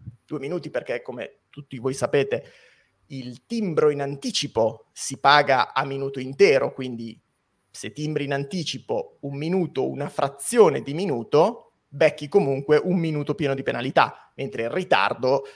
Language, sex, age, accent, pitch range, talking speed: Italian, male, 30-49, native, 125-165 Hz, 145 wpm